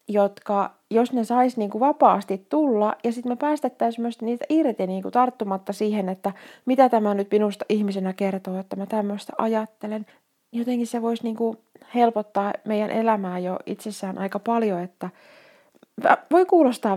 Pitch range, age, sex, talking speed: 195-230 Hz, 30-49, female, 150 wpm